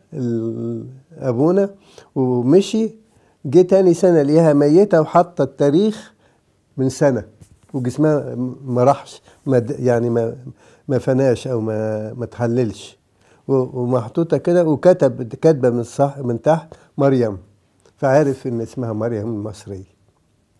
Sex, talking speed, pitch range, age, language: male, 100 wpm, 120-175 Hz, 50-69, English